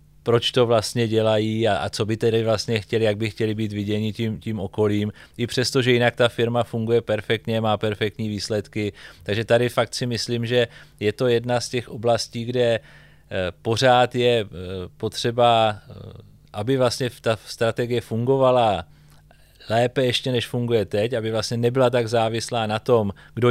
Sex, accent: male, native